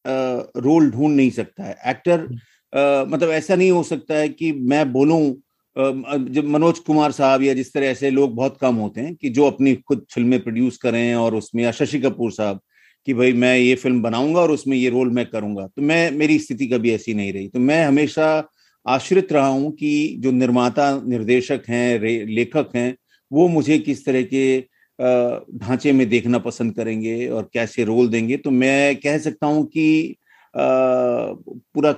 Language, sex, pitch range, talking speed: Hindi, male, 125-155 Hz, 185 wpm